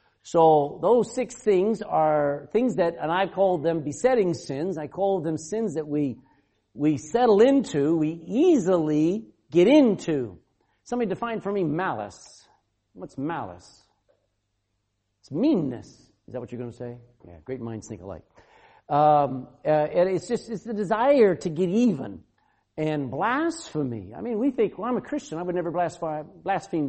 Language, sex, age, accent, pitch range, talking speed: English, male, 50-69, American, 130-190 Hz, 160 wpm